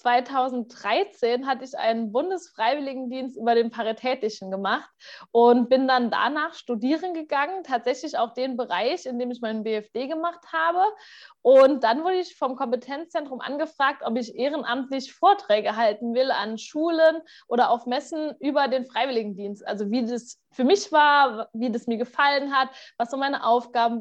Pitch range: 230-300 Hz